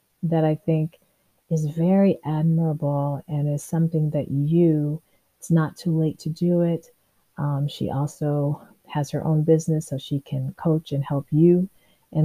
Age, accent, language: 40-59, American, English